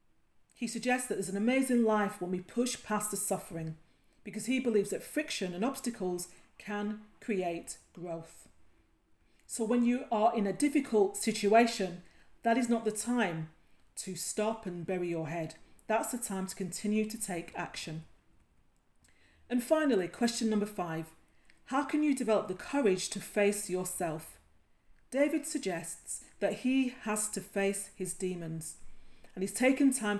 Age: 40-59